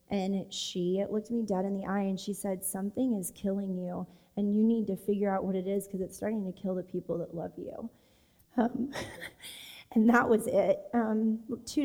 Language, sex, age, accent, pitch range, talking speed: English, female, 20-39, American, 215-265 Hz, 210 wpm